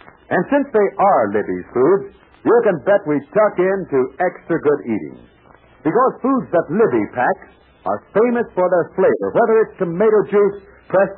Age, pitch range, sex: 60-79, 155-230 Hz, male